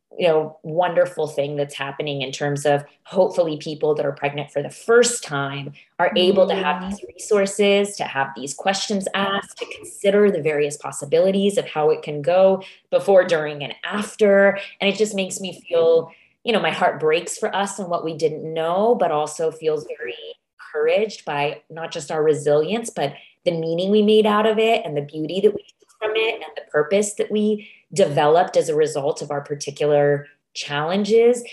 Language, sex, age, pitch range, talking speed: English, female, 20-39, 150-210 Hz, 190 wpm